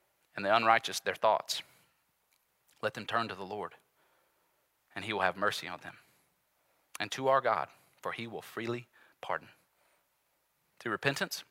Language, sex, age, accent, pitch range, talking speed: English, male, 30-49, American, 145-205 Hz, 150 wpm